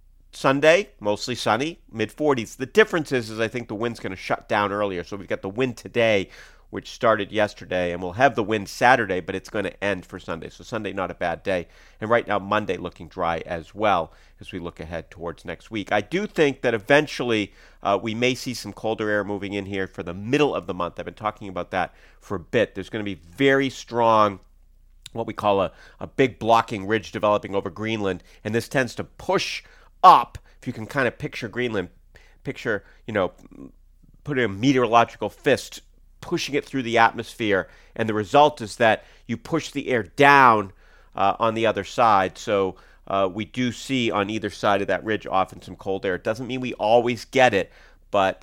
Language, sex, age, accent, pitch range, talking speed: English, male, 40-59, American, 95-125 Hz, 210 wpm